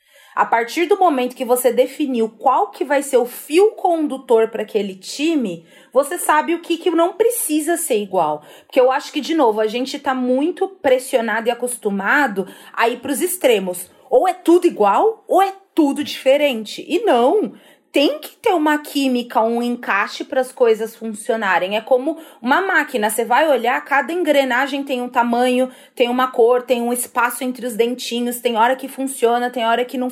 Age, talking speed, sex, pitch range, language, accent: 30-49, 185 wpm, female, 230-305 Hz, Portuguese, Brazilian